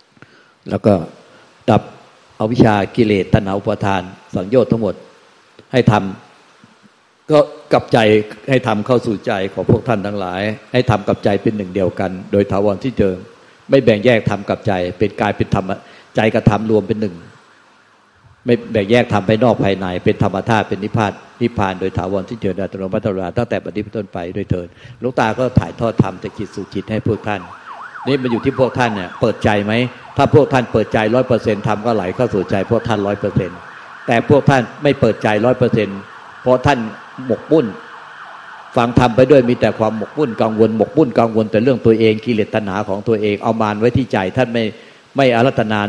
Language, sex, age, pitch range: Thai, male, 60-79, 100-120 Hz